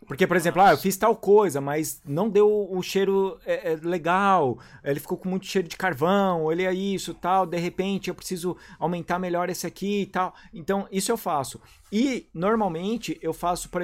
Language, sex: English, male